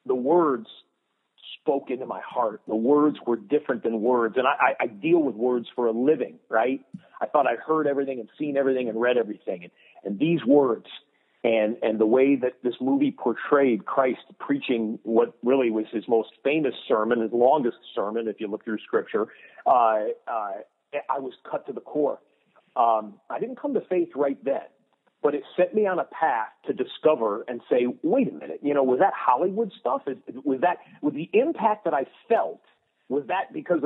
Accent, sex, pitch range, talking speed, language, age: American, male, 125-195 Hz, 195 wpm, English, 40-59